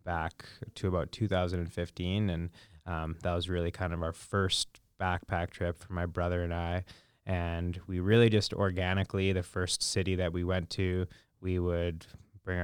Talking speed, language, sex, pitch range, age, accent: 165 wpm, English, male, 85-95 Hz, 20-39, American